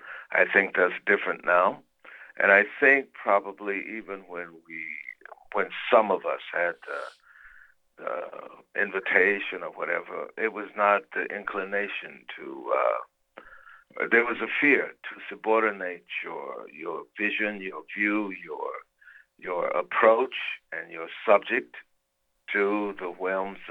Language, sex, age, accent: English, male, 60-79, American